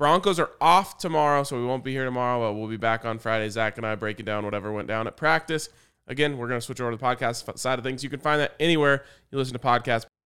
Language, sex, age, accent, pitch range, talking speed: English, male, 20-39, American, 125-160 Hz, 285 wpm